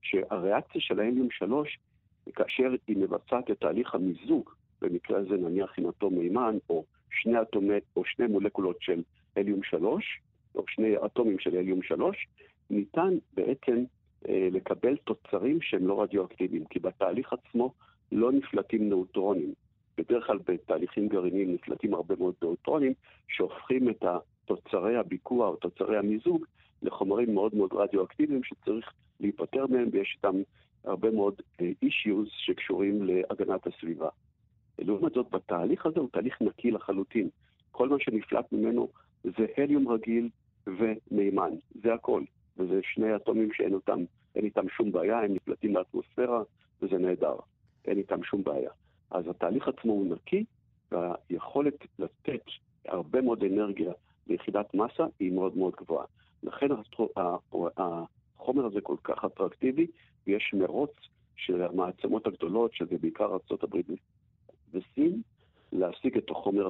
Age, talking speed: 50-69, 130 wpm